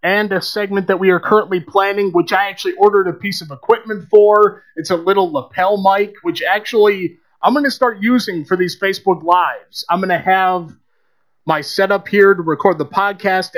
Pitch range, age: 175-205 Hz, 30-49